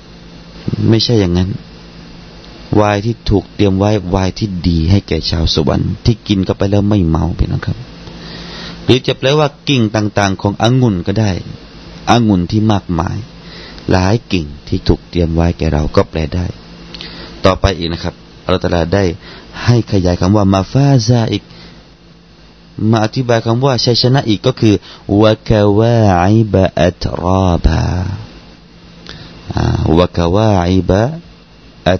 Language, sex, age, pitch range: Thai, male, 30-49, 85-110 Hz